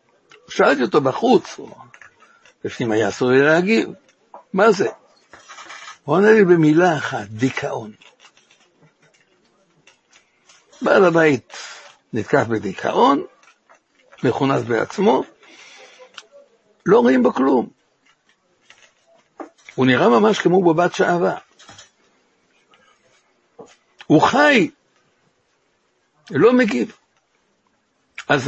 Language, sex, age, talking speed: Hebrew, male, 60-79, 80 wpm